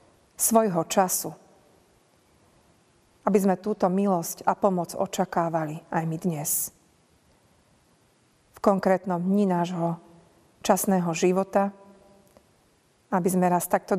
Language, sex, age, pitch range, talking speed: Slovak, female, 40-59, 175-195 Hz, 95 wpm